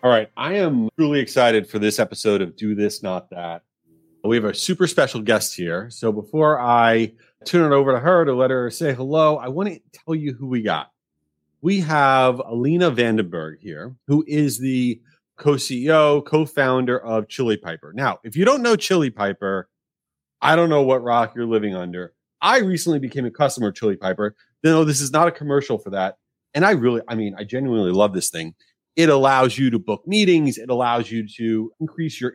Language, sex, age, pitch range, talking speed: English, male, 30-49, 115-160 Hz, 200 wpm